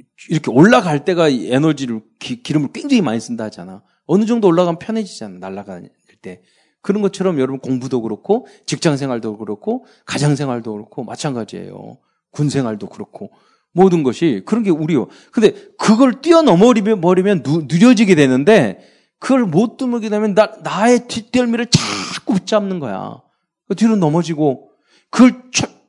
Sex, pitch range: male, 145-230 Hz